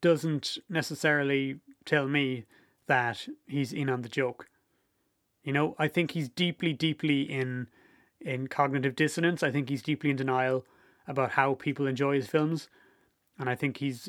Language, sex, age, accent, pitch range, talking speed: English, male, 30-49, Irish, 135-160 Hz, 160 wpm